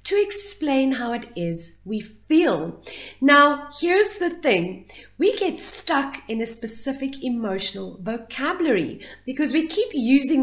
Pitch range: 210-315 Hz